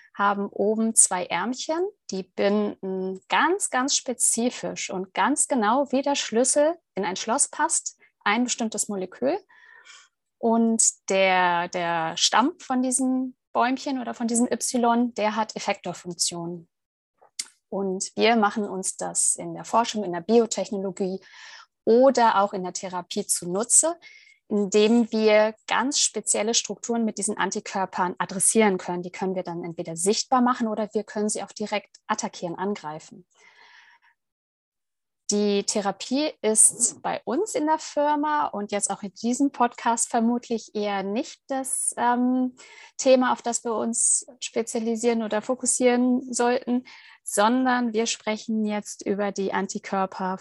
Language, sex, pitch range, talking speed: German, female, 195-255 Hz, 135 wpm